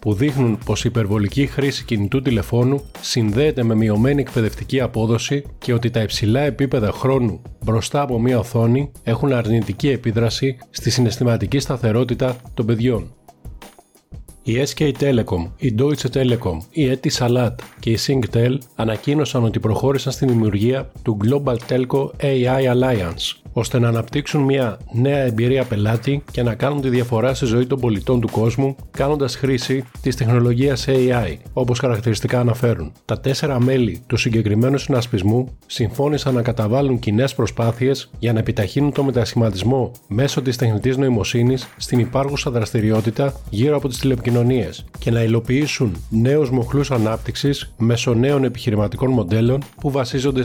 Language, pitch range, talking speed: Greek, 115-135 Hz, 140 wpm